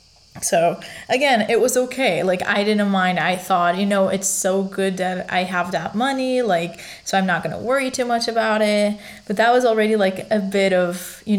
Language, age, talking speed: English, 20-39, 215 wpm